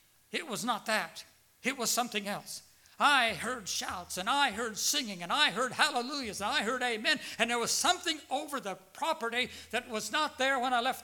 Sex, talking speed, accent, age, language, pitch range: male, 200 wpm, American, 60-79, English, 180-235 Hz